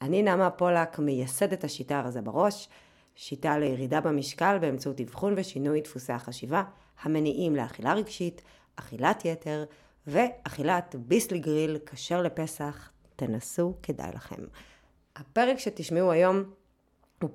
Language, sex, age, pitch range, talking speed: Hebrew, female, 30-49, 125-160 Hz, 110 wpm